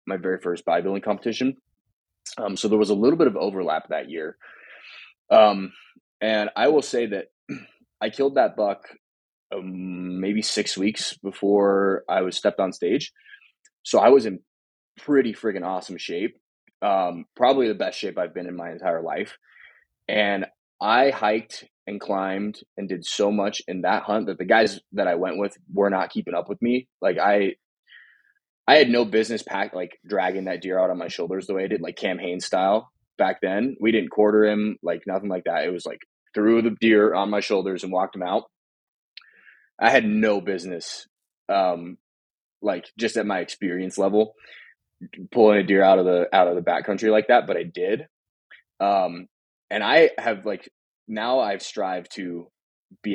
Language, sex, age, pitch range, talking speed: English, male, 20-39, 95-110 Hz, 185 wpm